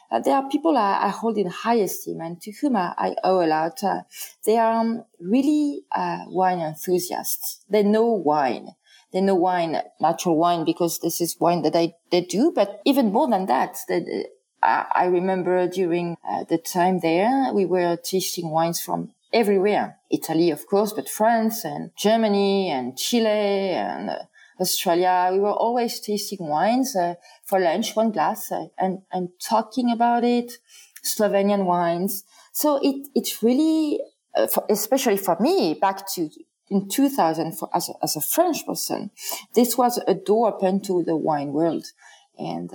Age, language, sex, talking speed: 30-49, English, female, 170 wpm